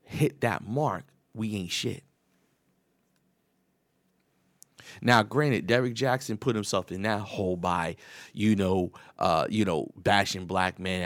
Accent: American